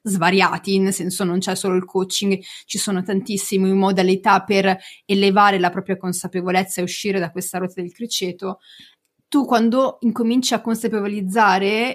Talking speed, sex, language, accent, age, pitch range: 145 wpm, female, Italian, native, 30-49, 195-245 Hz